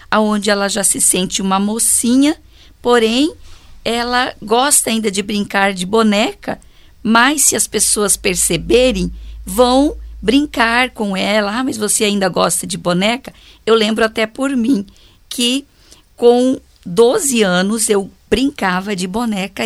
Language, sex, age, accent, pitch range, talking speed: English, female, 50-69, Brazilian, 195-240 Hz, 135 wpm